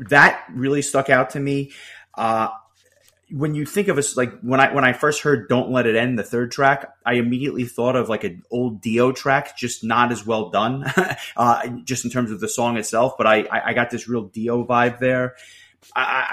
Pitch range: 110-130 Hz